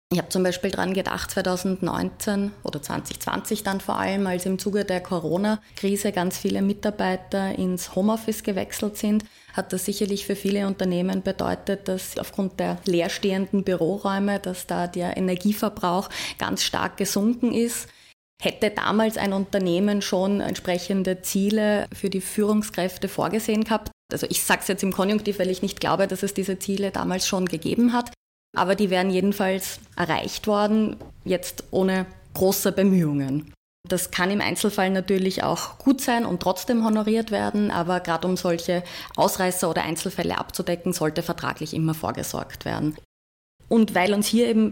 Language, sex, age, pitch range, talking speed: German, female, 20-39, 180-205 Hz, 155 wpm